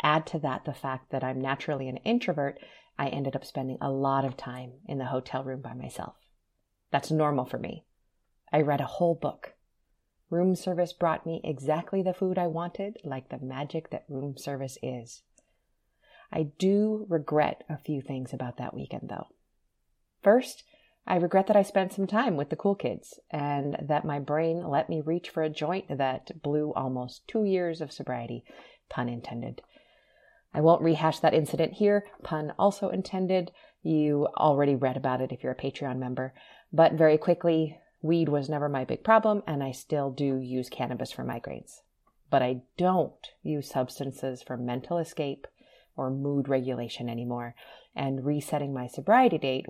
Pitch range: 135-175 Hz